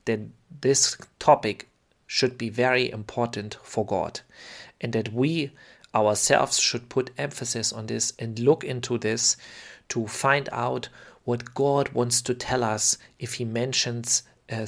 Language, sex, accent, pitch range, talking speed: English, male, German, 110-130 Hz, 145 wpm